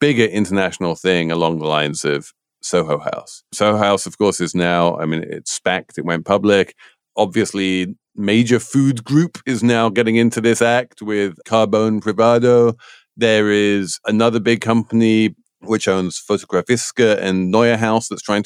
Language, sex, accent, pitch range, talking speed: English, male, British, 95-125 Hz, 155 wpm